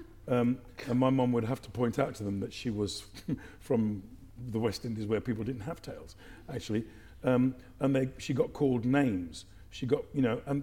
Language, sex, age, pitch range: English, male, 50-69, 105-135 Hz